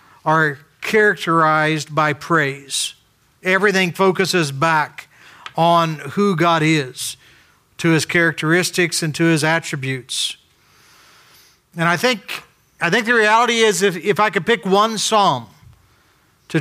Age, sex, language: 50-69, male, English